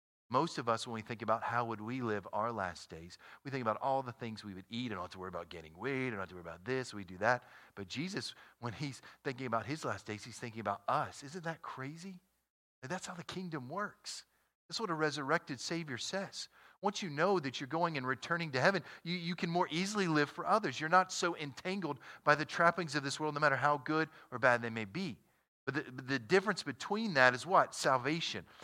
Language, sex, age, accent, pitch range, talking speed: English, male, 40-59, American, 105-150 Hz, 235 wpm